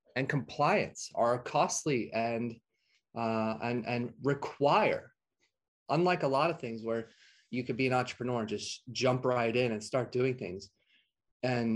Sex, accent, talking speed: male, American, 155 wpm